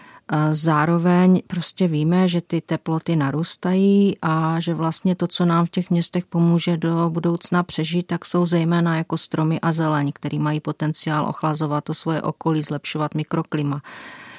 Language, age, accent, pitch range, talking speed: Czech, 40-59, native, 155-175 Hz, 150 wpm